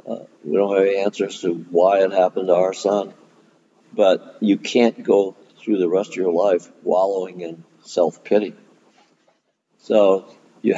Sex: male